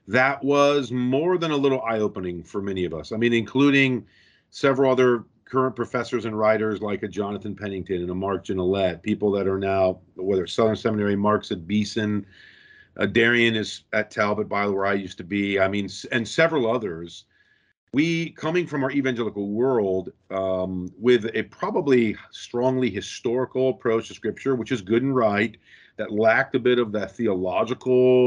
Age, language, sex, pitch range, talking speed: 40-59, English, male, 100-130 Hz, 175 wpm